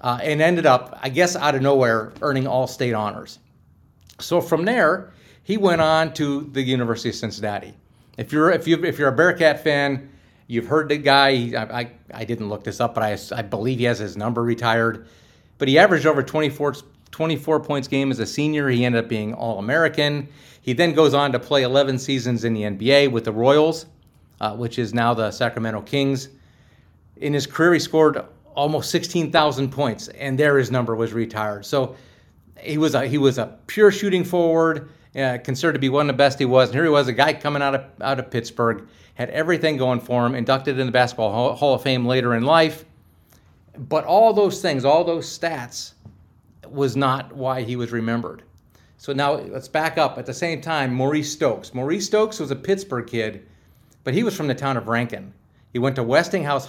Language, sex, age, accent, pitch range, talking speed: English, male, 40-59, American, 115-150 Hz, 205 wpm